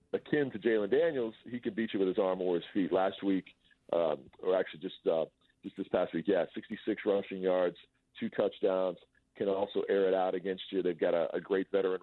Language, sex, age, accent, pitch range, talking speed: English, male, 40-59, American, 95-135 Hz, 220 wpm